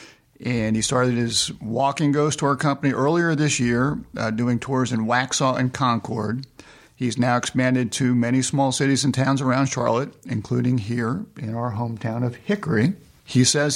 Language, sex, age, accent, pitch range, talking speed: English, male, 50-69, American, 125-145 Hz, 165 wpm